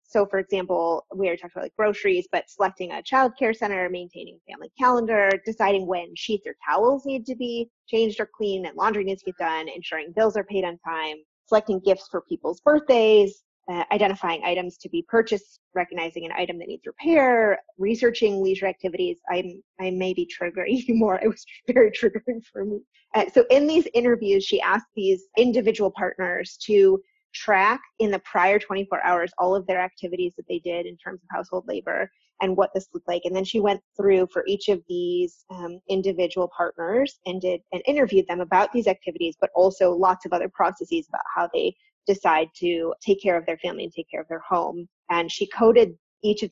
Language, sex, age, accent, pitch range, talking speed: English, female, 20-39, American, 180-235 Hz, 200 wpm